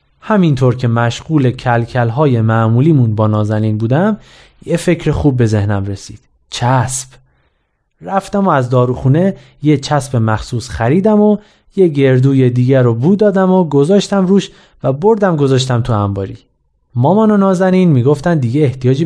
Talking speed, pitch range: 140 wpm, 120-165 Hz